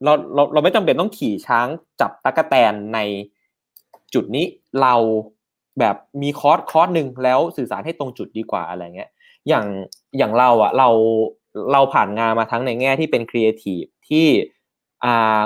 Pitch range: 115-145 Hz